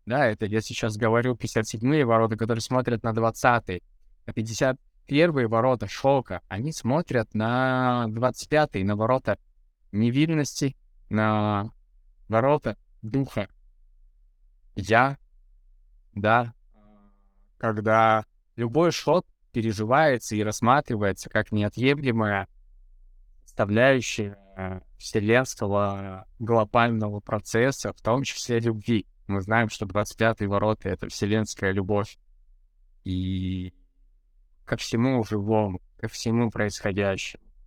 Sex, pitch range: male, 95-125 Hz